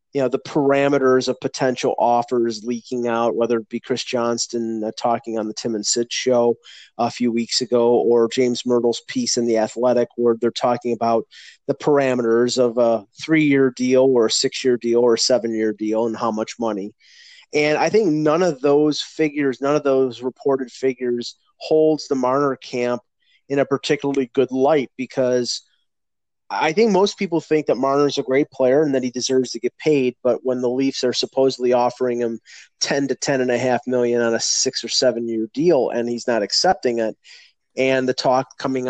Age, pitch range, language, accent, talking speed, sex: 30-49, 120-135 Hz, English, American, 195 wpm, male